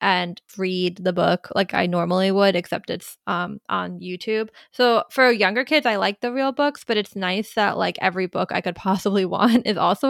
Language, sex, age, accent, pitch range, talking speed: English, female, 20-39, American, 190-245 Hz, 210 wpm